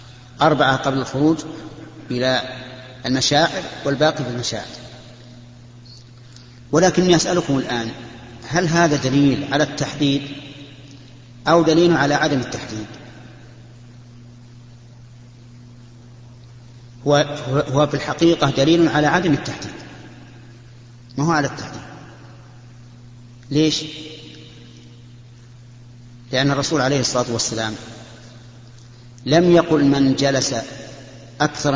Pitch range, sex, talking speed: 120-140 Hz, male, 85 wpm